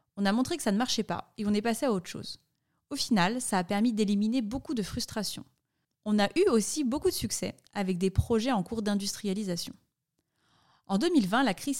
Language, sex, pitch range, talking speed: French, female, 195-250 Hz, 210 wpm